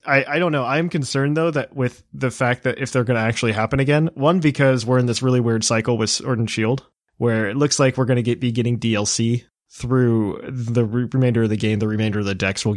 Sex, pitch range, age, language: male, 110-135 Hz, 20-39, English